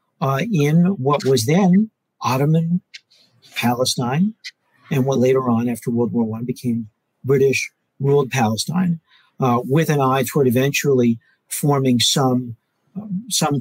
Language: English